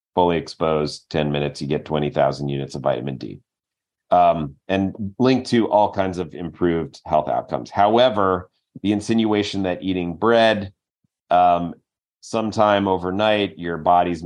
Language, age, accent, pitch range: English, 30-49, American, 85-100 Hz